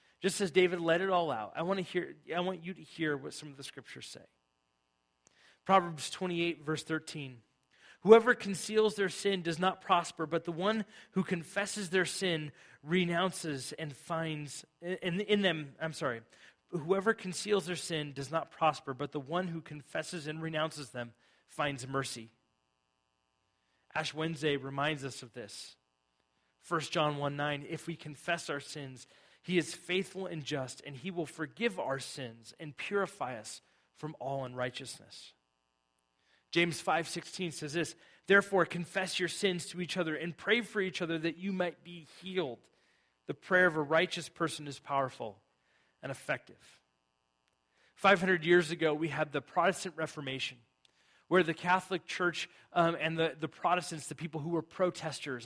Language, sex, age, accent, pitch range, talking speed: English, male, 30-49, American, 140-180 Hz, 160 wpm